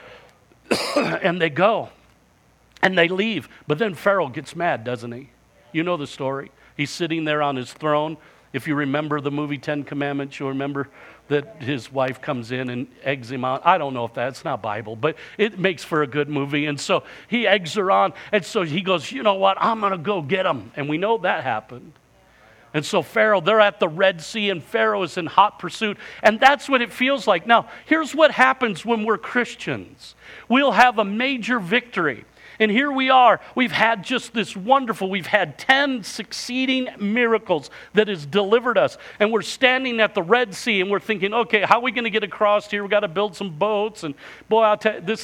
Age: 50-69